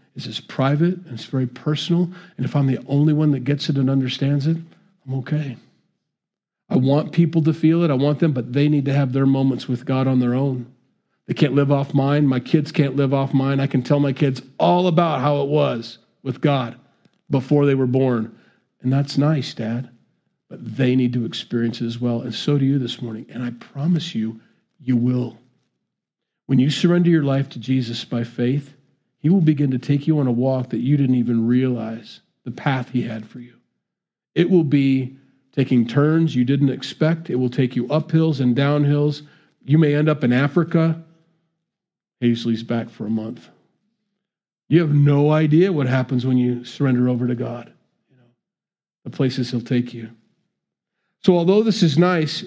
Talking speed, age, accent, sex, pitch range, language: 195 wpm, 40-59, American, male, 125-160 Hz, English